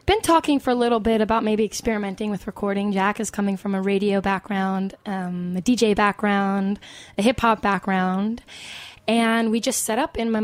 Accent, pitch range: American, 200-230 Hz